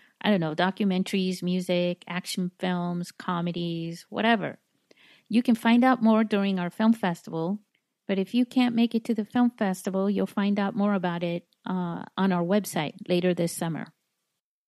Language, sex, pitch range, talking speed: English, female, 180-225 Hz, 170 wpm